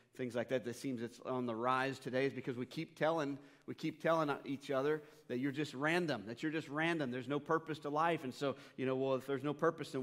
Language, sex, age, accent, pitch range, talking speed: English, male, 40-59, American, 125-155 Hz, 245 wpm